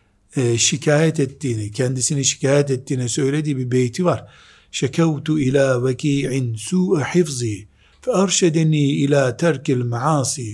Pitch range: 125-180 Hz